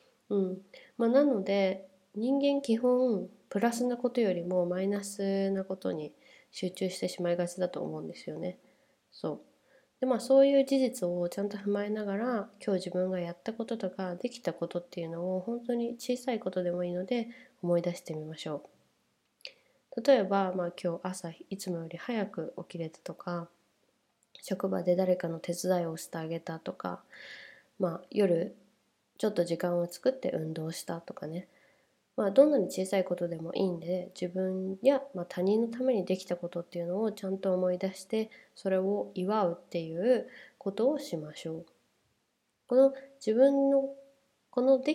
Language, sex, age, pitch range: Japanese, female, 20-39, 175-230 Hz